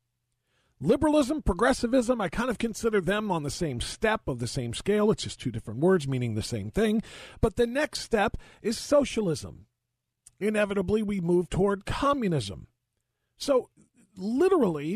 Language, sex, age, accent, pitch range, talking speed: English, male, 40-59, American, 125-205 Hz, 150 wpm